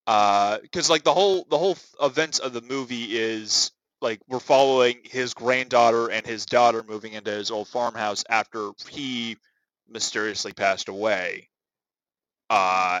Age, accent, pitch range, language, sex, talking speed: 20-39, American, 105-125 Hz, English, male, 145 wpm